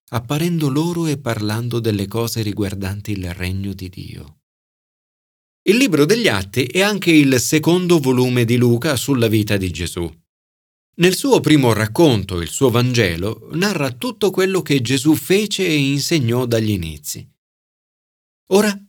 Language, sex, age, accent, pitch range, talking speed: Italian, male, 40-59, native, 105-160 Hz, 140 wpm